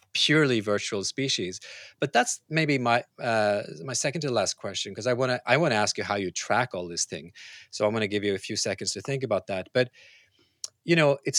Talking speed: 235 wpm